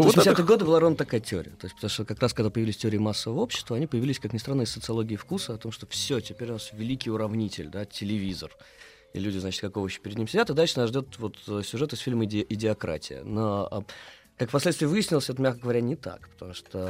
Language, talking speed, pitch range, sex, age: Russian, 235 wpm, 100-120 Hz, male, 20-39